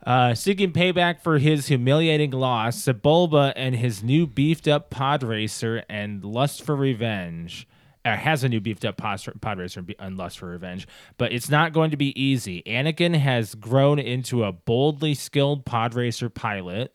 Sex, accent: male, American